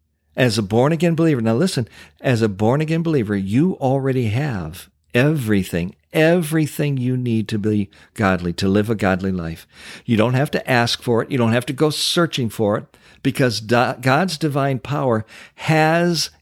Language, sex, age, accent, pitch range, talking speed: English, male, 50-69, American, 100-140 Hz, 165 wpm